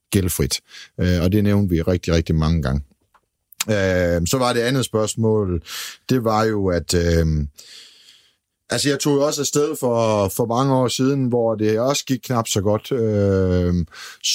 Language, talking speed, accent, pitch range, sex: Danish, 165 wpm, native, 95-115 Hz, male